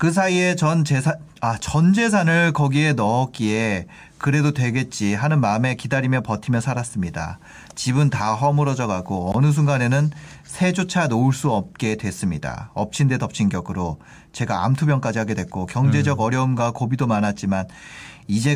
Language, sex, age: Korean, male, 40-59